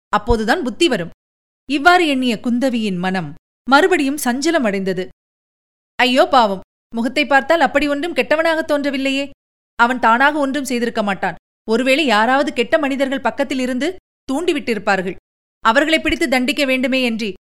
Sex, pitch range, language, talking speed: female, 225-285 Hz, Tamil, 115 wpm